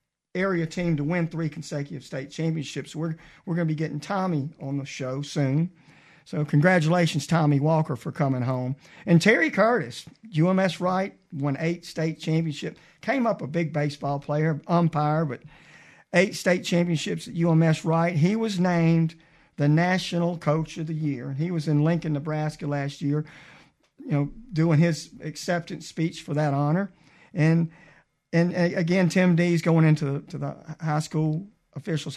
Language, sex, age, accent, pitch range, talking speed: English, male, 50-69, American, 150-180 Hz, 160 wpm